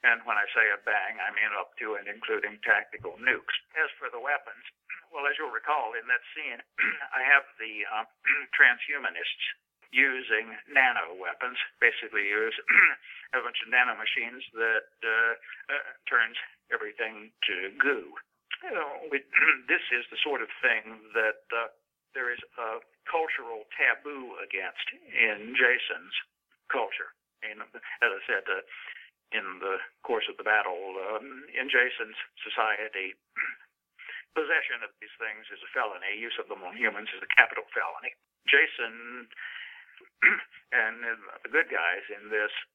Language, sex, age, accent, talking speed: English, male, 60-79, American, 145 wpm